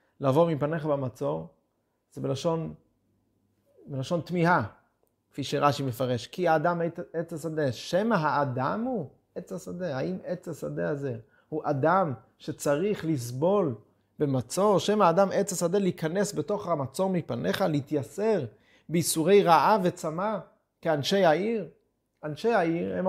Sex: male